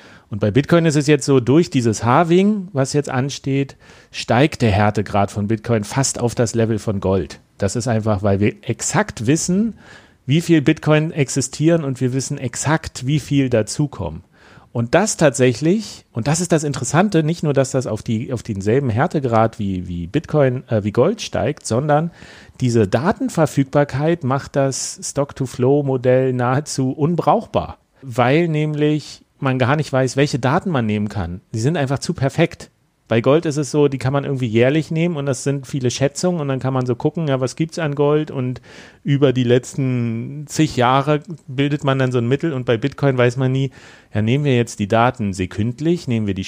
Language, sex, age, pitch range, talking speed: German, male, 40-59, 115-150 Hz, 190 wpm